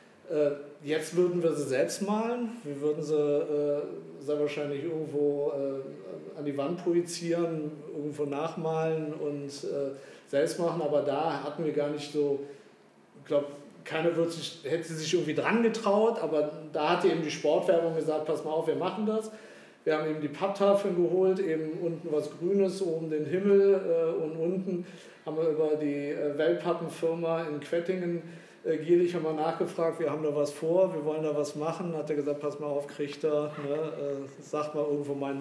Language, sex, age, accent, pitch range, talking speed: German, male, 50-69, German, 145-165 Hz, 175 wpm